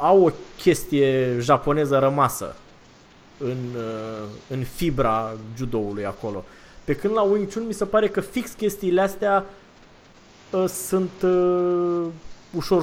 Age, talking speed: 20-39, 120 wpm